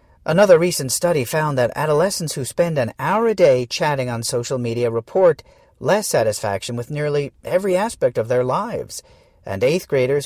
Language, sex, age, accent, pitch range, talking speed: English, male, 40-59, American, 125-165 Hz, 170 wpm